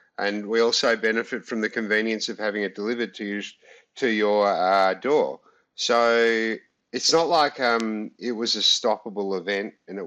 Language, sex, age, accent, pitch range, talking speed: English, male, 50-69, Australian, 100-115 Hz, 165 wpm